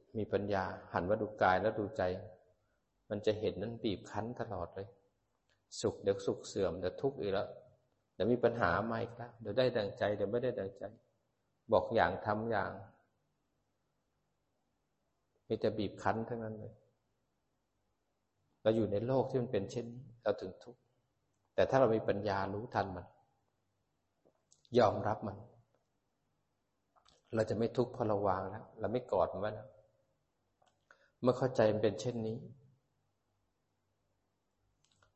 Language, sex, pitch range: Thai, male, 100-120 Hz